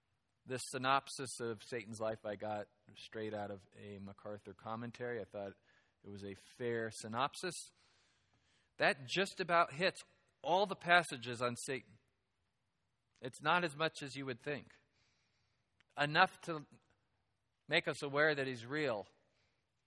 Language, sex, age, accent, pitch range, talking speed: English, male, 40-59, American, 115-150 Hz, 135 wpm